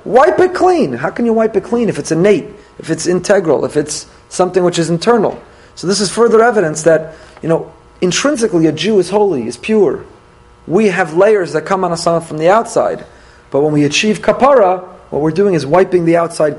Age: 30-49